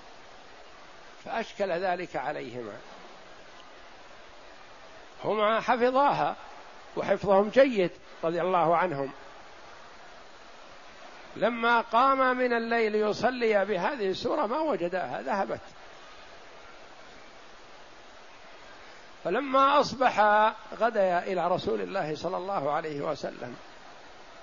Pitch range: 180-235 Hz